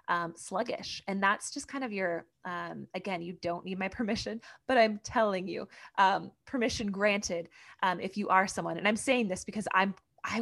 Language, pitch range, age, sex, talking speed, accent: English, 175-225 Hz, 20-39, female, 195 wpm, American